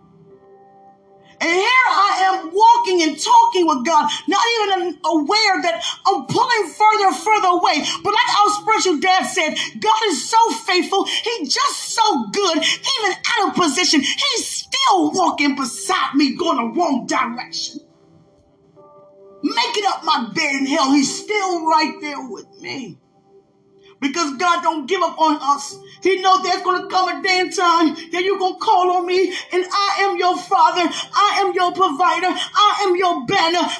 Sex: female